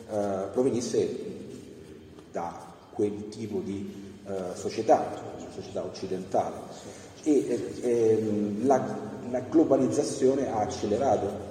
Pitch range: 100-115 Hz